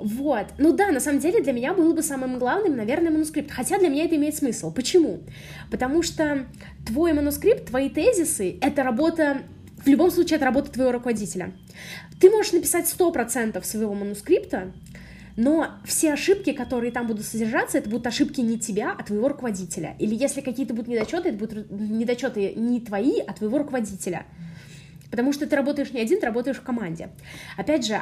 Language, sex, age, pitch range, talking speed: Russian, female, 20-39, 220-295 Hz, 175 wpm